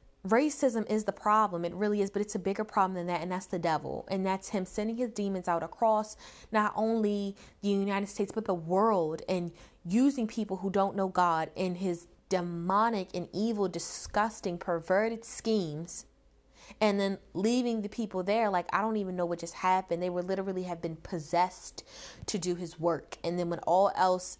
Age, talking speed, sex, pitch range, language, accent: 20-39, 190 wpm, female, 190-250 Hz, English, American